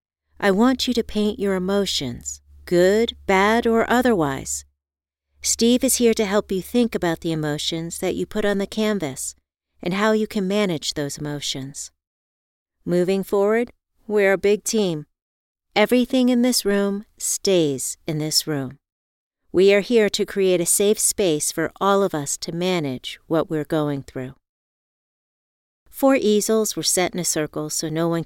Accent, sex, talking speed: American, female, 160 wpm